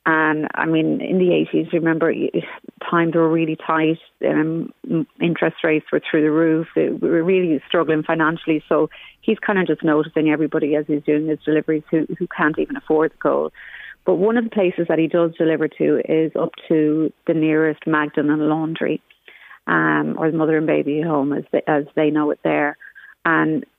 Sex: female